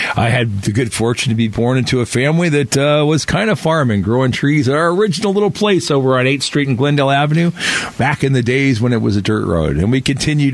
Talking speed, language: 250 wpm, English